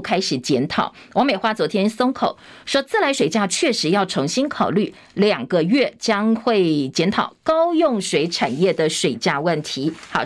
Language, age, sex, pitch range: Chinese, 50-69, female, 185-255 Hz